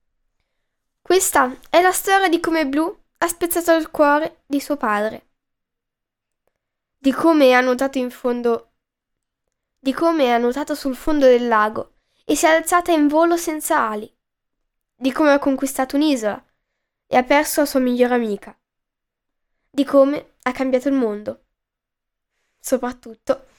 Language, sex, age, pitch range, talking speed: Italian, female, 10-29, 245-320 Hz, 140 wpm